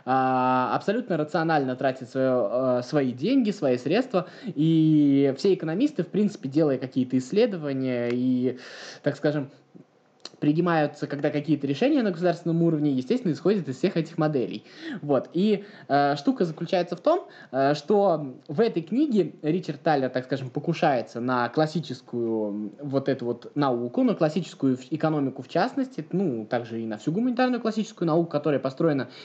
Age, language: 20-39, Russian